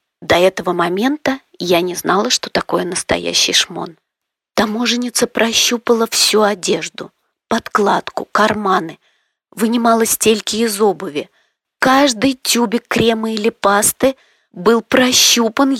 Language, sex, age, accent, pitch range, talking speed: Russian, female, 30-49, native, 185-250 Hz, 105 wpm